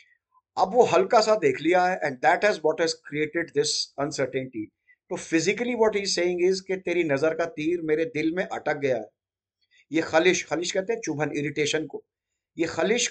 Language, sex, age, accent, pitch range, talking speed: Hindi, male, 50-69, native, 135-180 Hz, 50 wpm